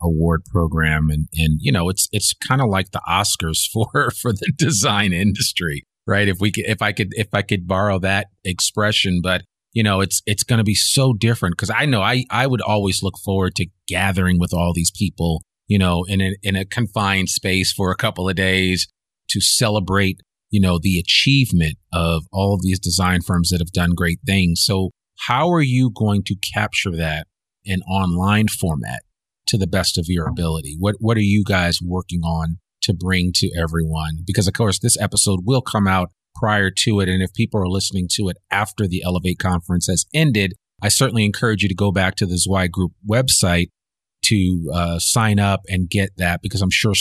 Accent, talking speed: American, 205 wpm